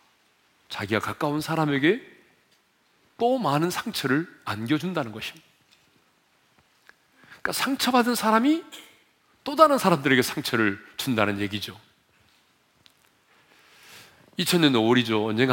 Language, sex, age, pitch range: Korean, male, 40-59, 110-170 Hz